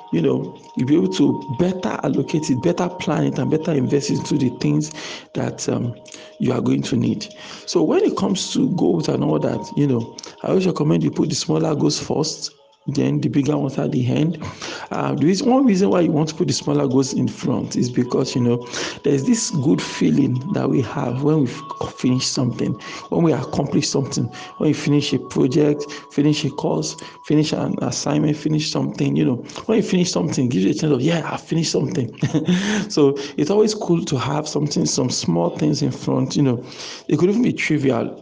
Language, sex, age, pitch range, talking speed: English, male, 50-69, 130-165 Hz, 210 wpm